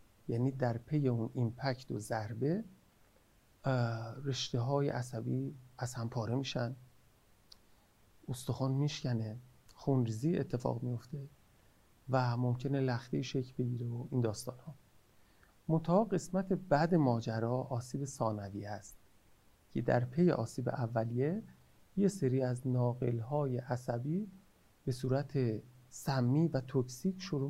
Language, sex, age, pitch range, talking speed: Persian, male, 40-59, 120-150 Hz, 110 wpm